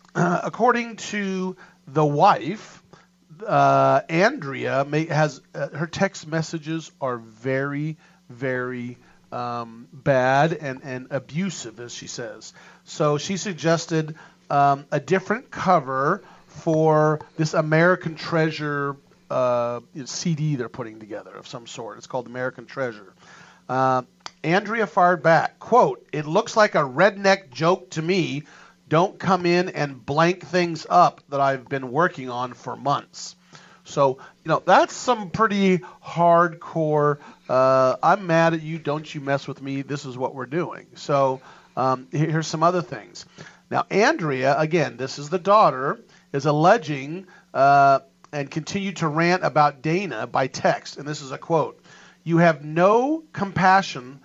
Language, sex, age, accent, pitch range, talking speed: English, male, 40-59, American, 140-180 Hz, 145 wpm